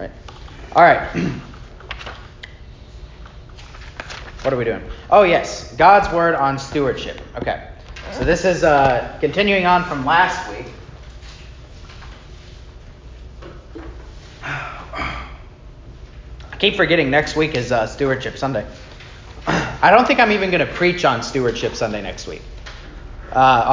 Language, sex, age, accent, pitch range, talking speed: English, male, 30-49, American, 130-160 Hz, 115 wpm